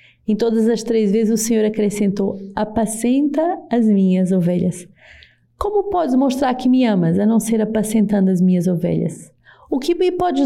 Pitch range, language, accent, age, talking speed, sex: 180-230 Hz, Portuguese, Brazilian, 30-49, 165 wpm, female